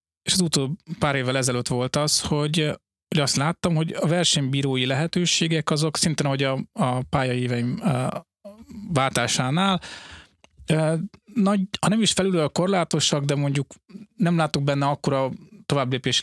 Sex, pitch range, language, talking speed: male, 125-170 Hz, Hungarian, 140 wpm